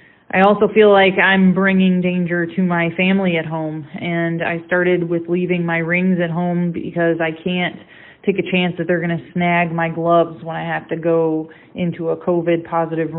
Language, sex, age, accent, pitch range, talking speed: English, female, 20-39, American, 165-180 Hz, 195 wpm